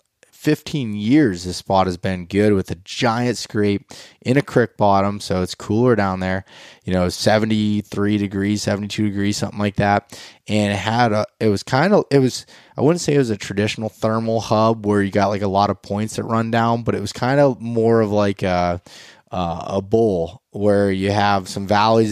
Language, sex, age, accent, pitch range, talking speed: English, male, 20-39, American, 100-115 Hz, 205 wpm